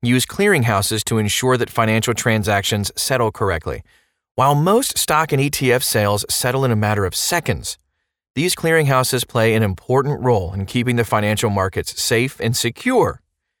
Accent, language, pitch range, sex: American, English, 105-135 Hz, male